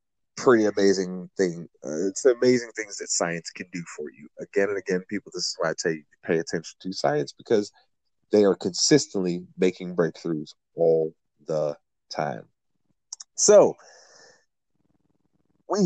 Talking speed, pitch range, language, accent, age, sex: 150 wpm, 100-150 Hz, English, American, 30-49, male